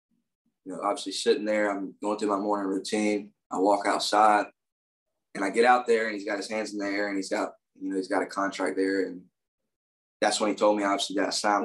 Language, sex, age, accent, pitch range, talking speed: English, male, 20-39, American, 100-120 Hz, 235 wpm